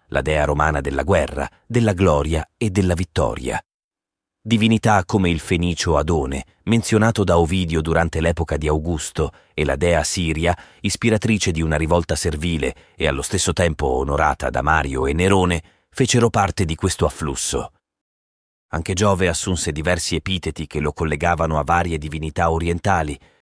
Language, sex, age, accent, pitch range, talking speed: Italian, male, 30-49, native, 80-100 Hz, 145 wpm